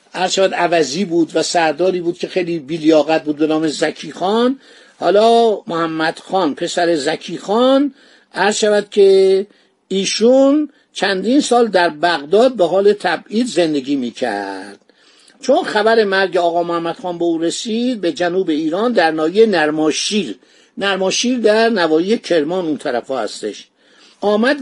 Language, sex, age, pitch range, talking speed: Persian, male, 50-69, 160-225 Hz, 135 wpm